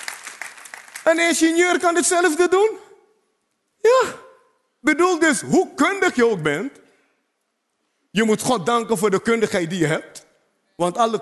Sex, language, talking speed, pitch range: male, Dutch, 135 wpm, 210-320 Hz